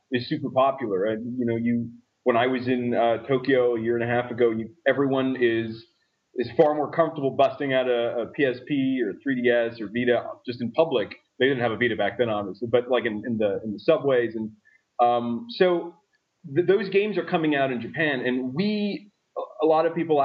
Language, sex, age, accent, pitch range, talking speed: English, male, 30-49, American, 120-155 Hz, 210 wpm